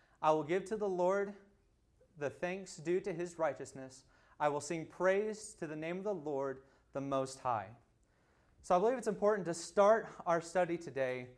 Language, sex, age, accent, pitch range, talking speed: English, male, 30-49, American, 135-180 Hz, 185 wpm